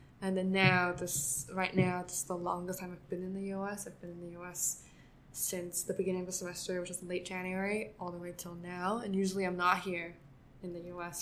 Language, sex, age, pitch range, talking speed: English, female, 10-29, 175-185 Hz, 230 wpm